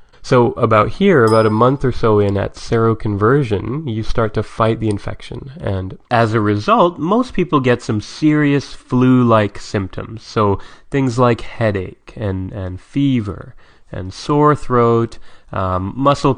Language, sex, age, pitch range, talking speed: English, male, 30-49, 100-125 Hz, 145 wpm